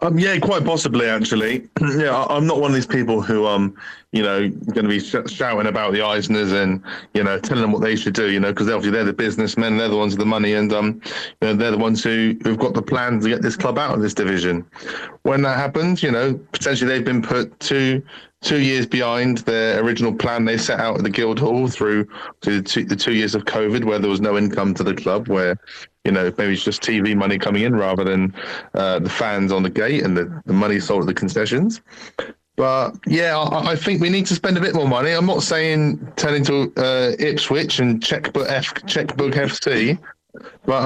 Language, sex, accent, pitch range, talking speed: English, male, British, 105-140 Hz, 230 wpm